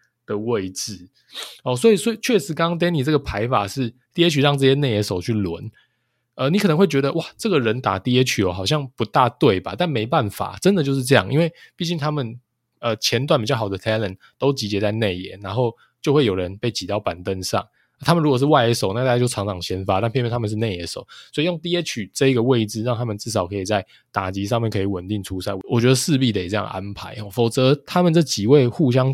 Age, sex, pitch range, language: 20-39, male, 105-145 Hz, Chinese